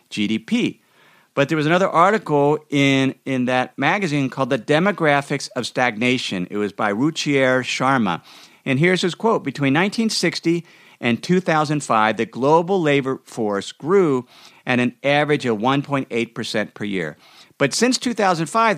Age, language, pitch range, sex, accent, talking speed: 50-69, English, 120-165 Hz, male, American, 135 wpm